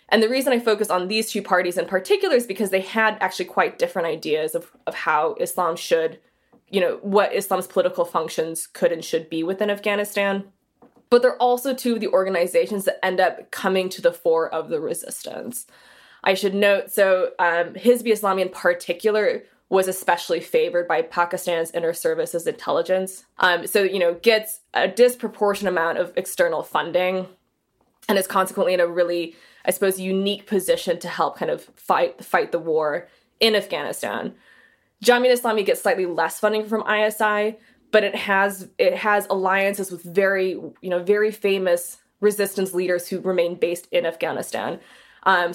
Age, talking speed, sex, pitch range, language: 20-39, 170 wpm, female, 185-245 Hz, English